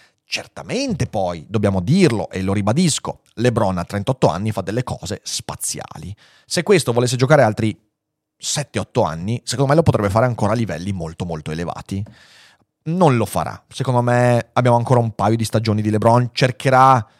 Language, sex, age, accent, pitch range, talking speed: Italian, male, 30-49, native, 110-145 Hz, 165 wpm